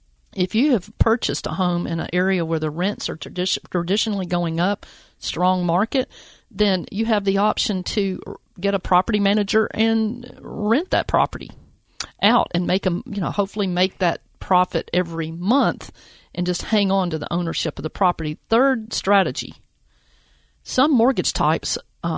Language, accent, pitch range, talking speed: English, American, 165-210 Hz, 160 wpm